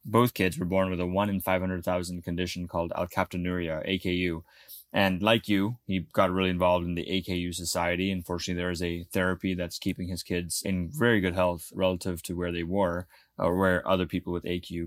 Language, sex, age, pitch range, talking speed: English, male, 20-39, 90-100 Hz, 195 wpm